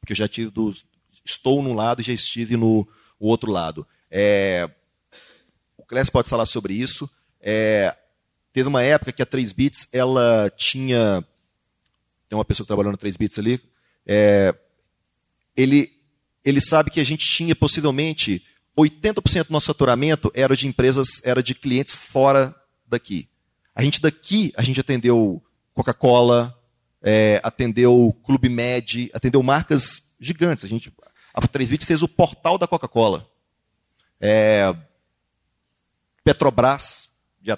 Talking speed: 135 wpm